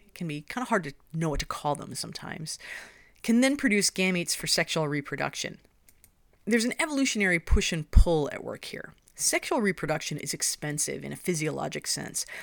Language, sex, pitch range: English, female, 150-210 Hz